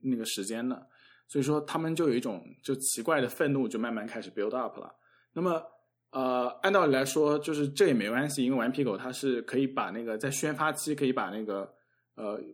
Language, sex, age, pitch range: Chinese, male, 20-39, 120-145 Hz